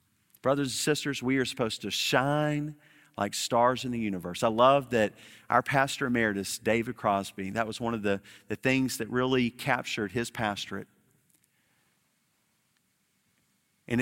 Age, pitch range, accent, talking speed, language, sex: 40-59, 110-150 Hz, American, 145 wpm, English, male